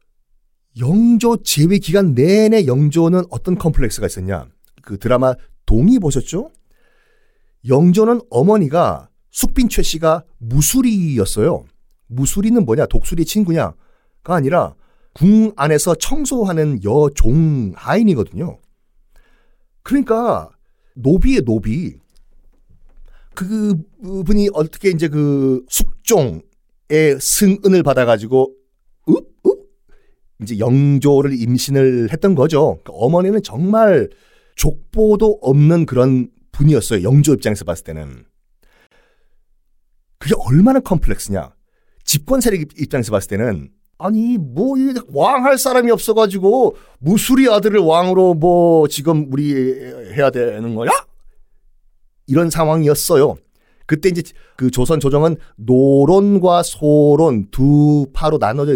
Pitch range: 130-205 Hz